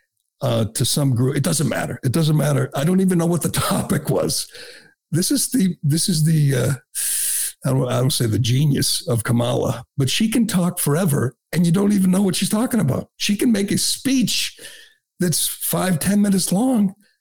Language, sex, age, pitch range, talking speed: English, male, 60-79, 130-185 Hz, 200 wpm